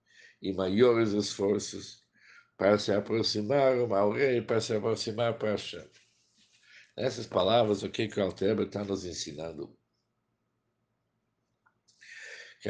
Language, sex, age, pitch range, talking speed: Portuguese, male, 60-79, 105-125 Hz, 110 wpm